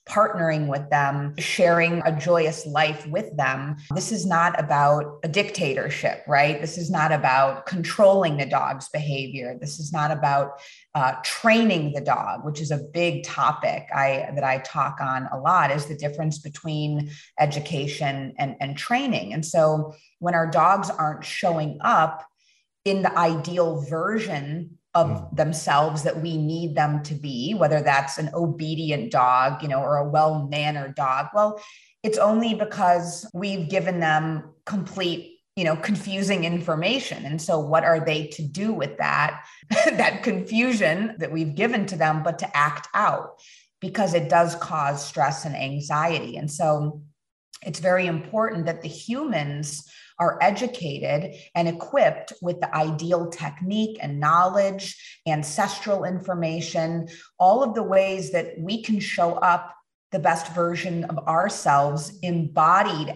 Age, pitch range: 30-49, 150-185 Hz